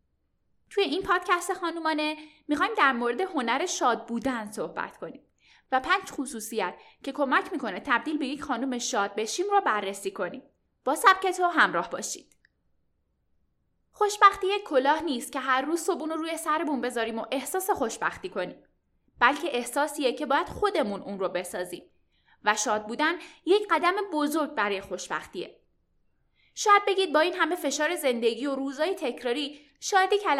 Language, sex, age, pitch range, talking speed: Persian, female, 10-29, 230-330 Hz, 145 wpm